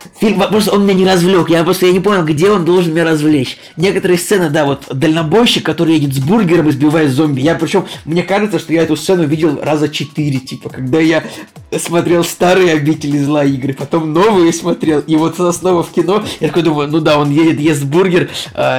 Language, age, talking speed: Russian, 20-39, 210 wpm